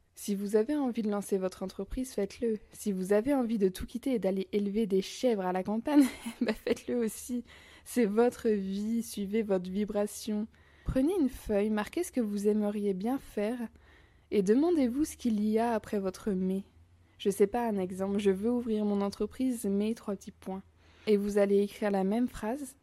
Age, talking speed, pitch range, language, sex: 20-39, 195 wpm, 200-235 Hz, French, female